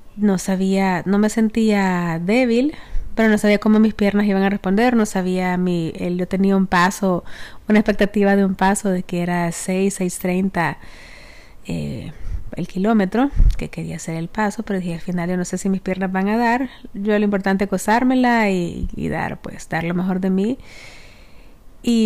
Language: Spanish